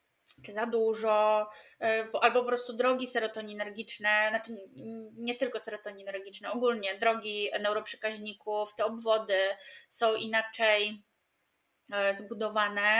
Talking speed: 90 wpm